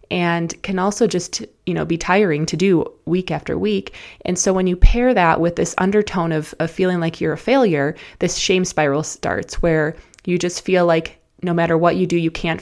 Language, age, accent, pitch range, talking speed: English, 20-39, American, 160-180 Hz, 215 wpm